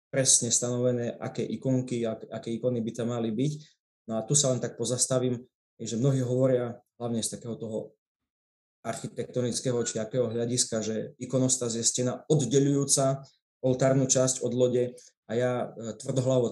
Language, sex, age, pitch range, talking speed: Slovak, male, 20-39, 120-150 Hz, 145 wpm